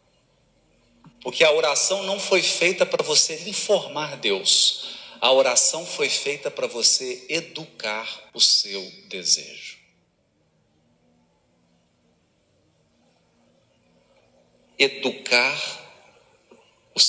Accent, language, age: Brazilian, Portuguese, 50-69